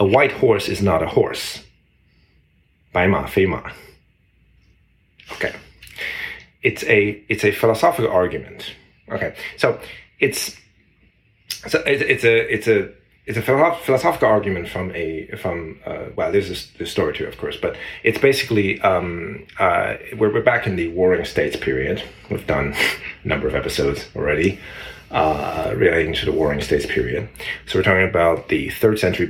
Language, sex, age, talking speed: English, male, 30-49, 150 wpm